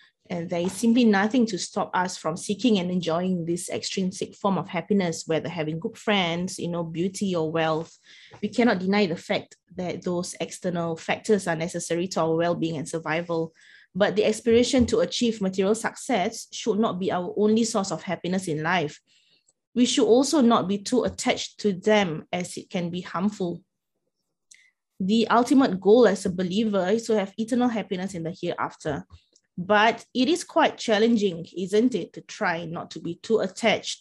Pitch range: 170-220 Hz